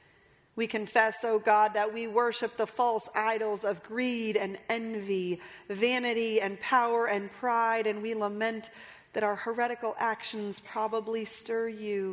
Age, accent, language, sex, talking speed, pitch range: 40-59, American, English, female, 145 wpm, 200-235 Hz